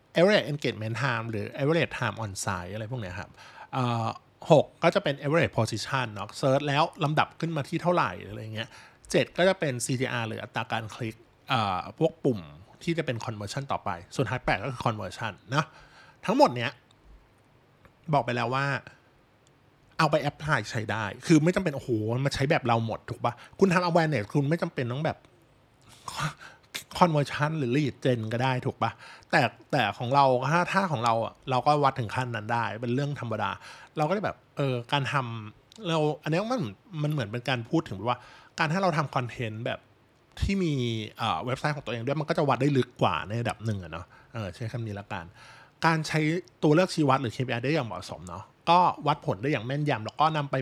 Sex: male